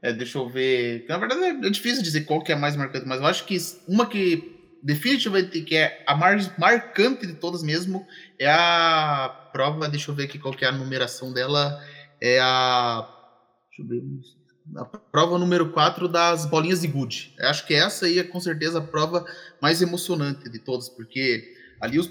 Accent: Brazilian